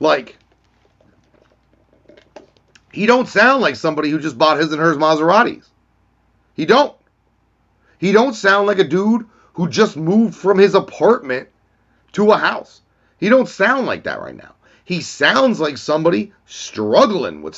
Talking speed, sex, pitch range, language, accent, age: 145 wpm, male, 150-225 Hz, English, American, 30-49